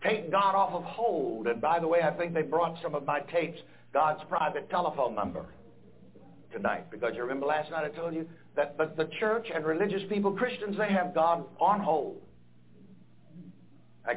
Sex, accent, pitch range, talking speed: male, American, 130-185 Hz, 180 wpm